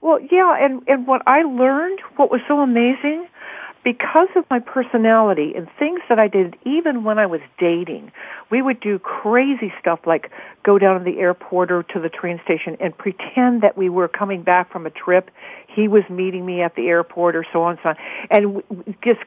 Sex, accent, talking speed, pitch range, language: female, American, 205 wpm, 180-245 Hz, English